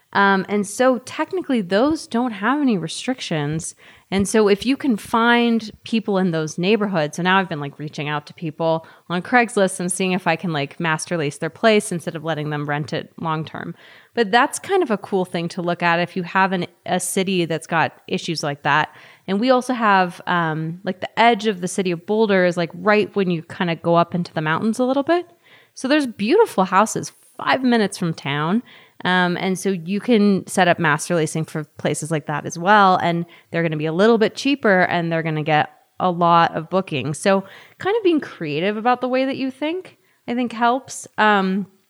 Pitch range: 165-225 Hz